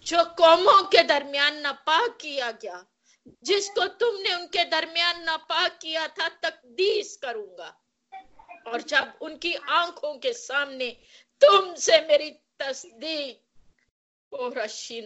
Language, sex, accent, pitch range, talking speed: Hindi, female, native, 270-365 Hz, 85 wpm